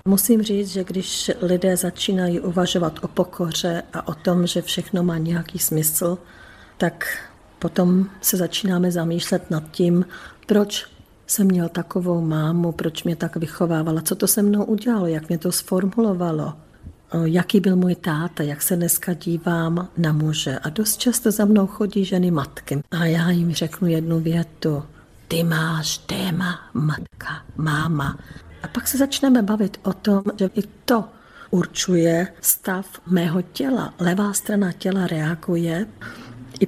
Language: Czech